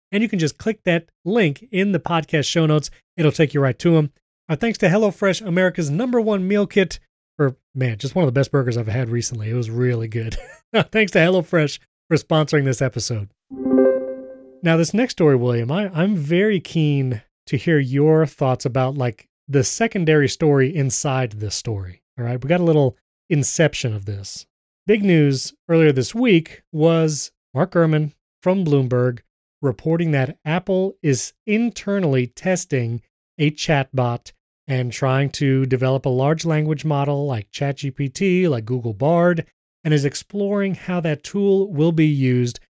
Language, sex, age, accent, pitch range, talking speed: English, male, 30-49, American, 130-170 Hz, 165 wpm